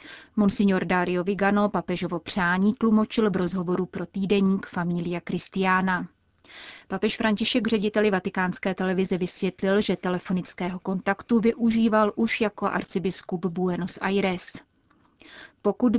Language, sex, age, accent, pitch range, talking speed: Czech, female, 30-49, native, 180-210 Hz, 105 wpm